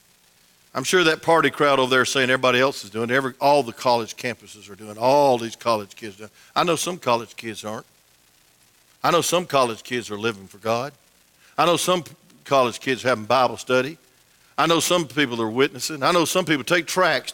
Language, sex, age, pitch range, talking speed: English, male, 50-69, 95-145 Hz, 210 wpm